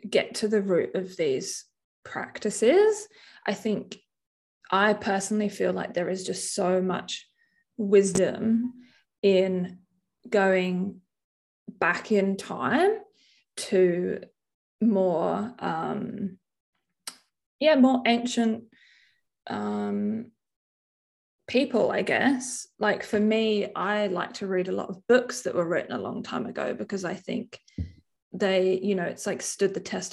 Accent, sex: Australian, female